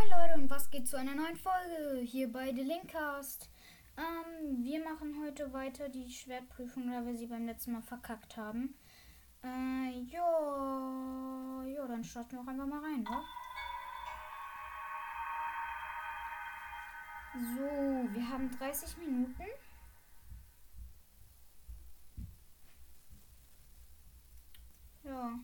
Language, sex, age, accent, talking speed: German, female, 10-29, German, 105 wpm